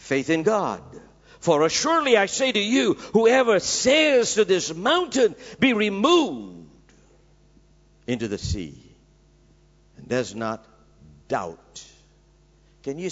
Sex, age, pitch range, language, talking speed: male, 60-79, 120-170 Hz, English, 115 wpm